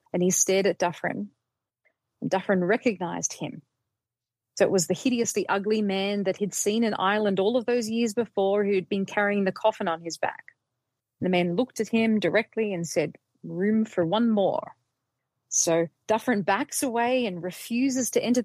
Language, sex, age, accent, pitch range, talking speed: English, female, 30-49, Australian, 180-220 Hz, 180 wpm